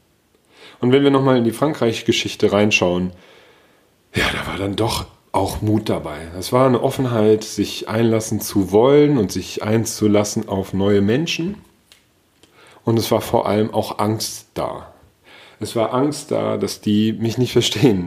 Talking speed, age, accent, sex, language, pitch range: 155 wpm, 40-59, German, male, German, 95-115 Hz